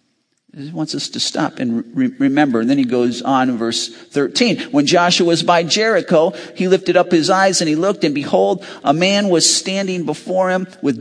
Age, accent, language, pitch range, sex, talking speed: 50-69, American, English, 120-175 Hz, male, 200 wpm